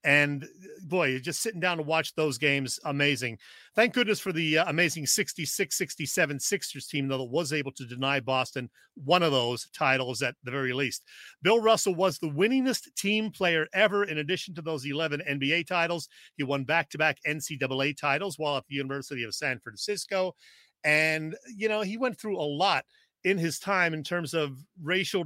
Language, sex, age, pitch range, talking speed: English, male, 40-59, 140-180 Hz, 180 wpm